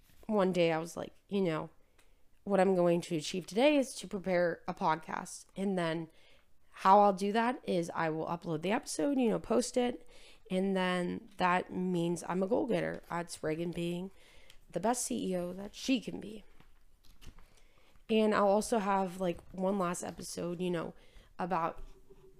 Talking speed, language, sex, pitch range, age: 170 wpm, English, female, 175-210 Hz, 20-39